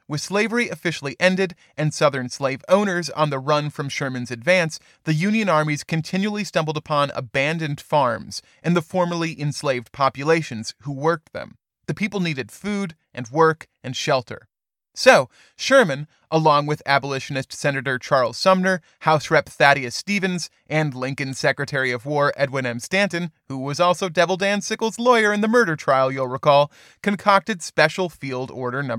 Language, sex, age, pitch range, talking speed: English, male, 30-49, 140-190 Hz, 155 wpm